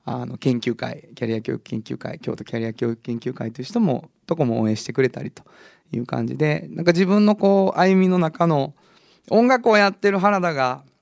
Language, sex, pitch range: Japanese, male, 120-180 Hz